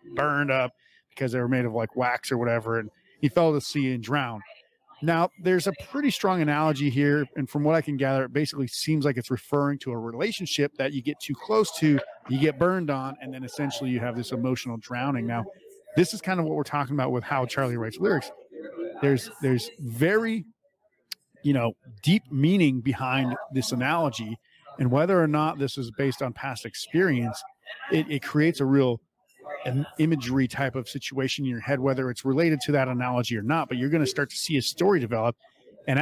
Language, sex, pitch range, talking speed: English, male, 130-160 Hz, 210 wpm